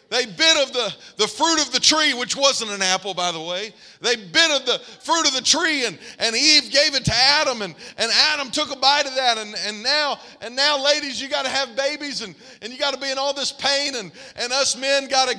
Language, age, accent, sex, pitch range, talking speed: English, 40-59, American, male, 240-295 Hz, 245 wpm